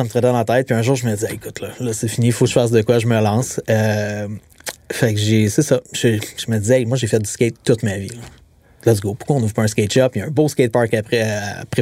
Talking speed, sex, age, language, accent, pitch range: 320 wpm, male, 30-49, French, Canadian, 110-135 Hz